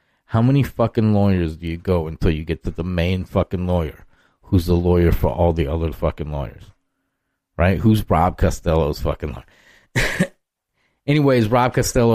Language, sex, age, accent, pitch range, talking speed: English, male, 30-49, American, 90-110 Hz, 165 wpm